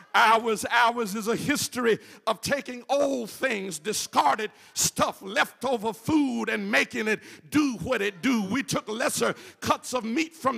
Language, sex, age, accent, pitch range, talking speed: English, male, 50-69, American, 225-305 Hz, 155 wpm